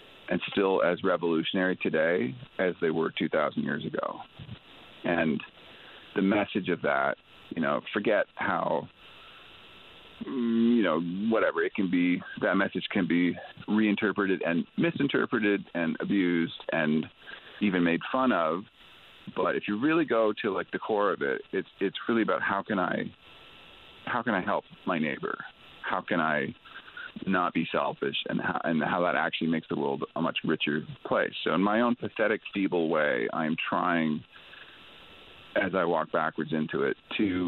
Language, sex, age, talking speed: English, male, 40-59, 160 wpm